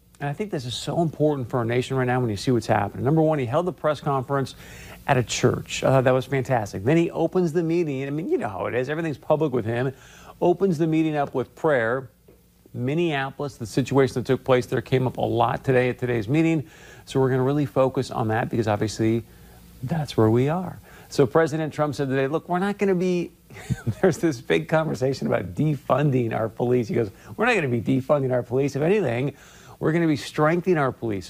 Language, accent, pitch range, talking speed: English, American, 120-155 Hz, 225 wpm